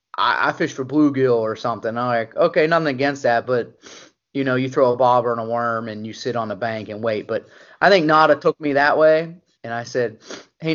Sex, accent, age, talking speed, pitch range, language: male, American, 30-49, 235 wpm, 125-150 Hz, English